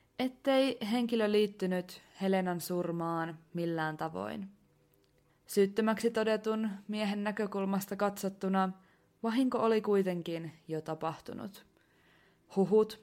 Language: Finnish